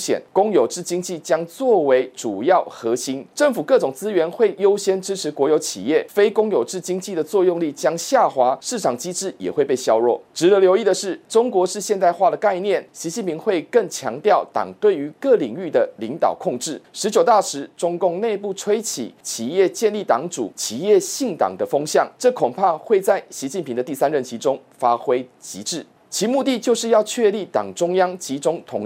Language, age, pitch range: Chinese, 30-49, 160-220 Hz